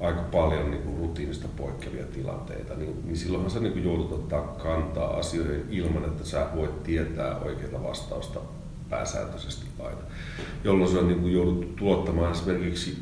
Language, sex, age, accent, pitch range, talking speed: Finnish, male, 40-59, native, 75-90 Hz, 150 wpm